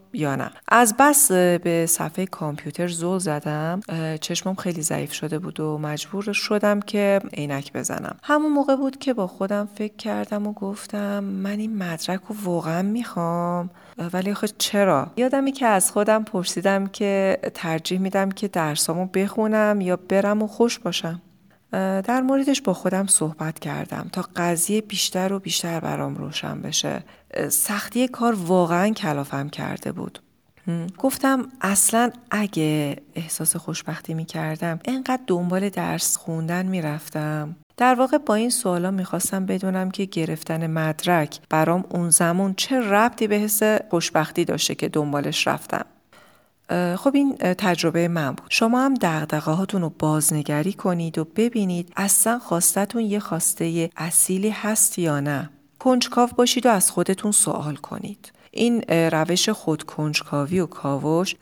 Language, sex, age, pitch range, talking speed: Persian, female, 30-49, 165-210 Hz, 140 wpm